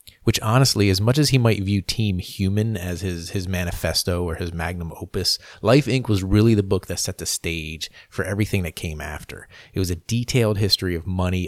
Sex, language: male, English